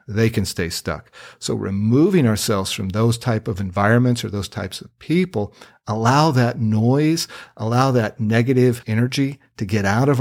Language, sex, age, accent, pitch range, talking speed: English, male, 50-69, American, 100-125 Hz, 165 wpm